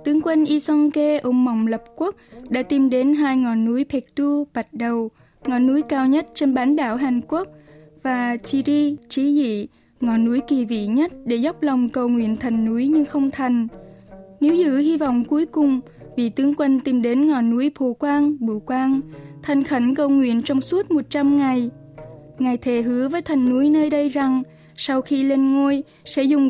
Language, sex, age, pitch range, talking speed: Vietnamese, female, 10-29, 235-280 Hz, 190 wpm